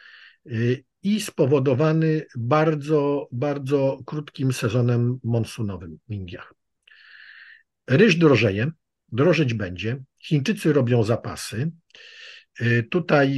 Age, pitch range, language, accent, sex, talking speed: 50-69, 120-160 Hz, Polish, native, male, 75 wpm